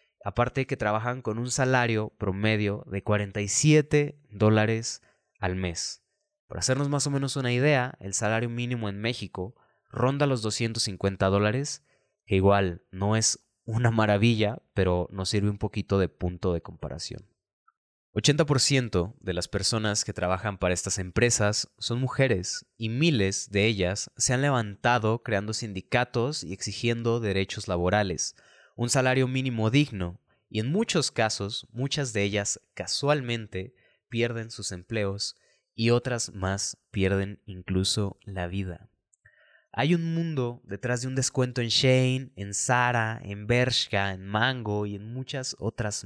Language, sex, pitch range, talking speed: Spanish, male, 100-125 Hz, 140 wpm